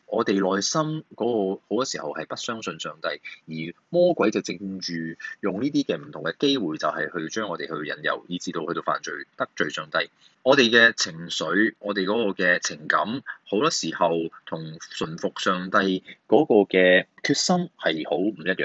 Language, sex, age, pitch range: Chinese, male, 20-39, 85-120 Hz